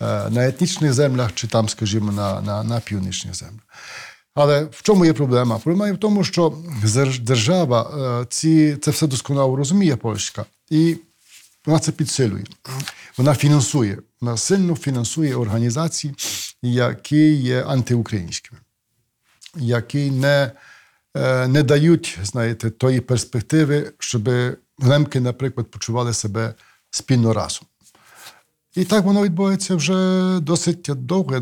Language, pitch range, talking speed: Ukrainian, 115-150 Hz, 120 wpm